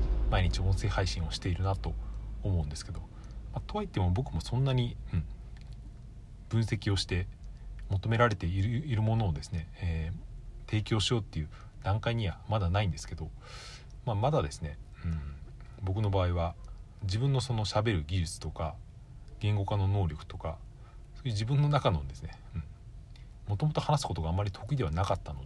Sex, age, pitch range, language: male, 40-59, 90-120 Hz, Japanese